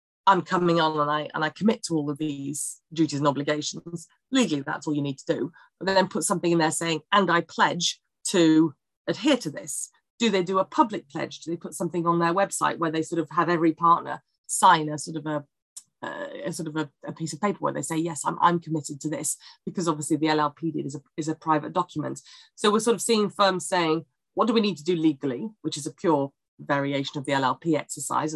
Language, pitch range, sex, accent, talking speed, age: English, 150-185 Hz, female, British, 235 wpm, 30-49